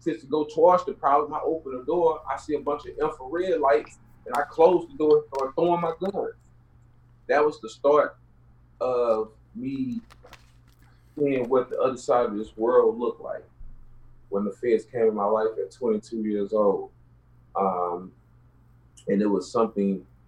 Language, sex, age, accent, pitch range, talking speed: English, male, 30-49, American, 105-140 Hz, 170 wpm